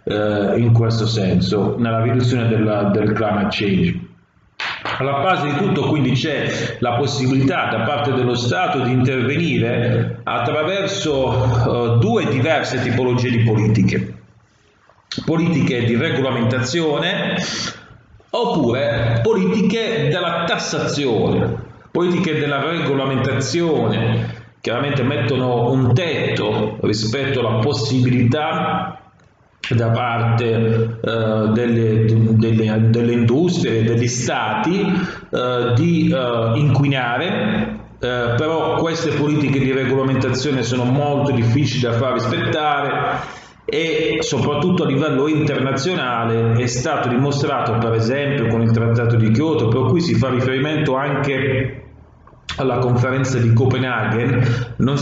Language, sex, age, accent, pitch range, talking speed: Italian, male, 40-59, native, 115-145 Hz, 105 wpm